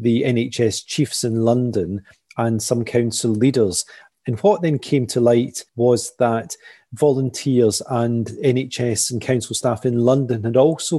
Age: 30-49